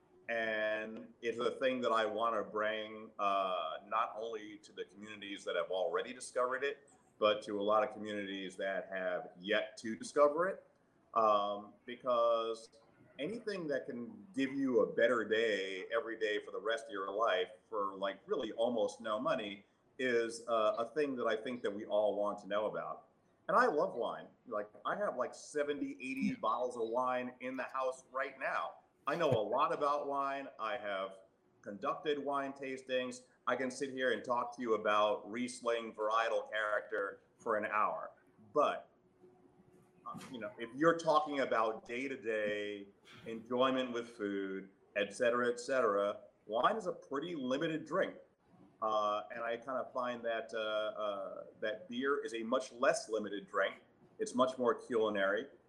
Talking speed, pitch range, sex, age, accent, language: 170 wpm, 110-145 Hz, male, 40-59, American, English